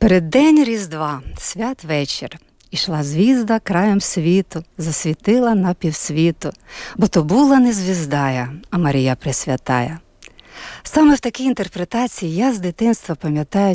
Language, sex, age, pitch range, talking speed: Ukrainian, female, 50-69, 150-215 Hz, 120 wpm